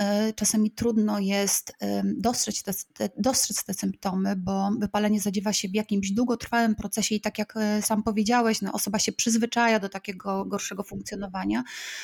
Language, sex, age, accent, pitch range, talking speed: Polish, female, 20-39, native, 195-220 Hz, 145 wpm